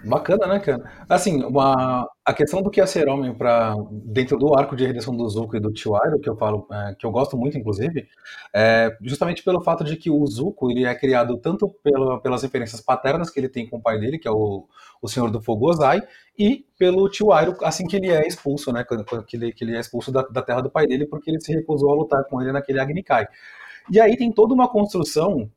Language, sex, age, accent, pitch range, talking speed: Portuguese, male, 30-49, Brazilian, 120-160 Hz, 240 wpm